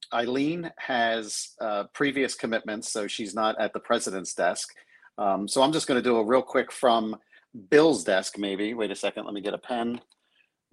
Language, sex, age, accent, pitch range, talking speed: English, male, 40-59, American, 100-125 Hz, 195 wpm